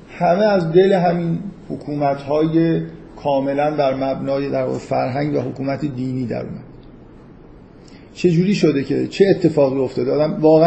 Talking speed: 145 wpm